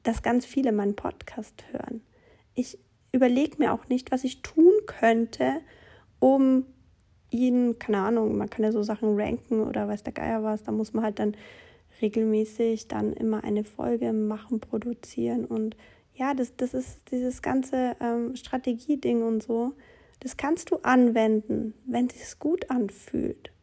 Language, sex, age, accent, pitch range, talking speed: German, female, 40-59, German, 220-265 Hz, 155 wpm